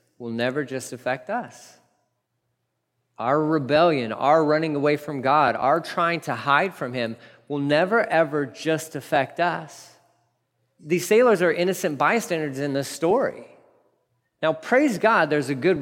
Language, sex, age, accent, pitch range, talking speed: English, male, 40-59, American, 130-195 Hz, 145 wpm